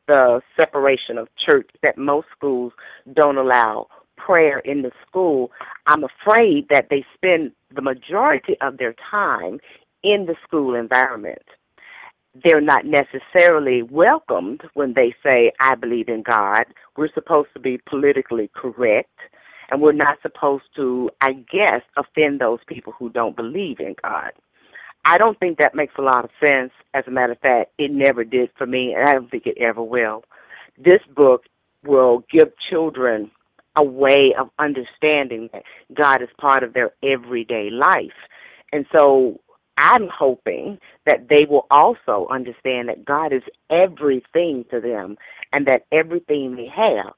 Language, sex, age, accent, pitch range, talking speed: English, female, 40-59, American, 125-150 Hz, 155 wpm